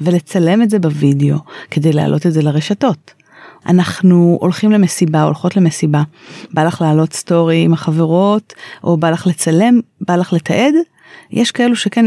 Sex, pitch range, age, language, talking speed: female, 165-220 Hz, 30-49, Hebrew, 150 wpm